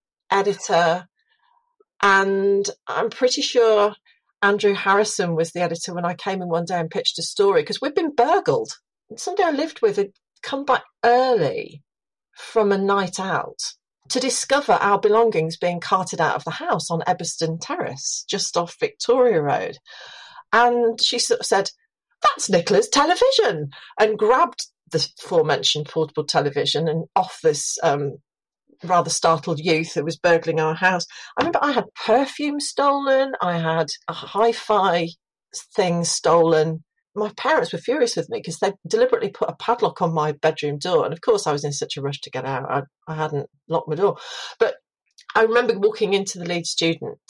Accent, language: British, English